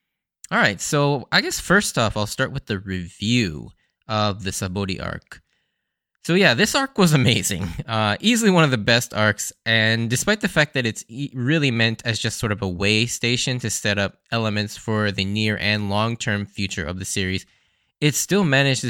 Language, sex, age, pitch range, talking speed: English, male, 20-39, 105-140 Hz, 185 wpm